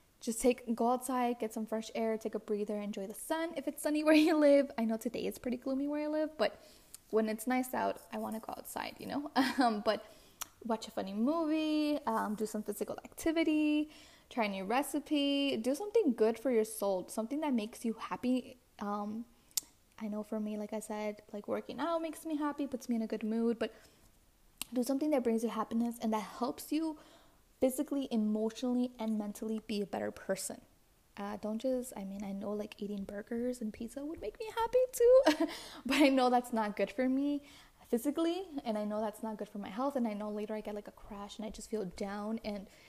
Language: English